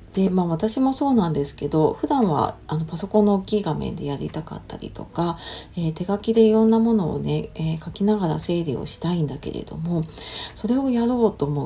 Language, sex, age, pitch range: Japanese, female, 40-59, 155-210 Hz